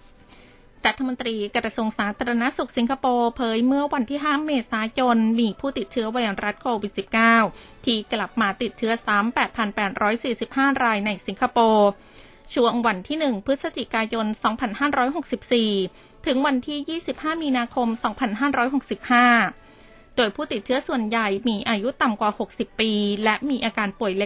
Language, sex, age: Thai, female, 20-39